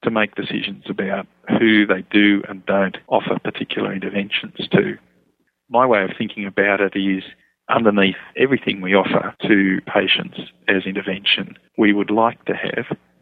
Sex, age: male, 40-59